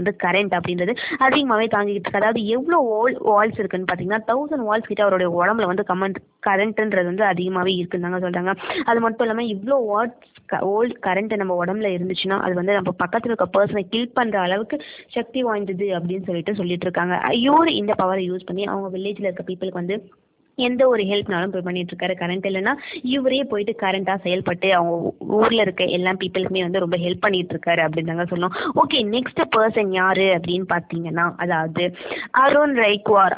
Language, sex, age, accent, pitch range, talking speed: Tamil, female, 20-39, native, 185-230 Hz, 75 wpm